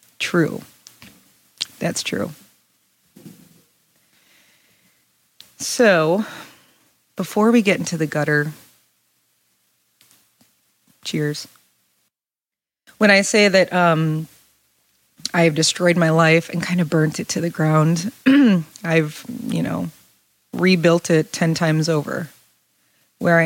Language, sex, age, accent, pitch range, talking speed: English, female, 30-49, American, 160-195 Hz, 95 wpm